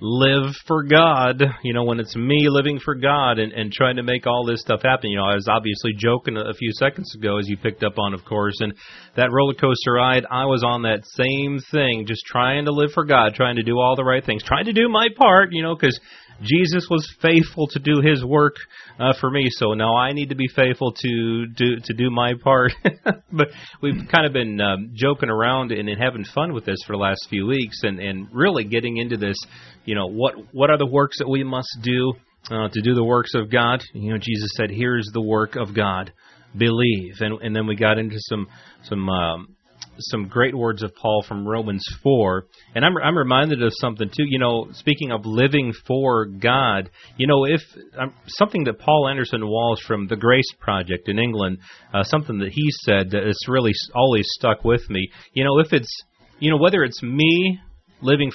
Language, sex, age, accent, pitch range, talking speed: English, male, 30-49, American, 110-135 Hz, 225 wpm